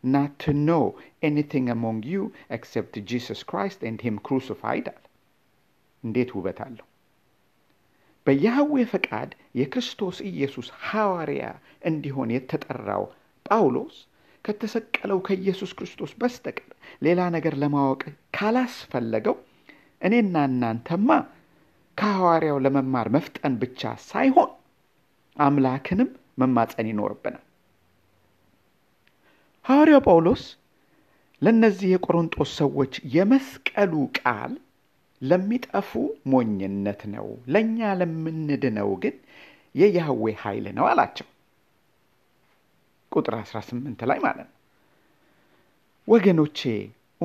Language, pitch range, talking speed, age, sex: Amharic, 125-200 Hz, 80 wpm, 50-69, male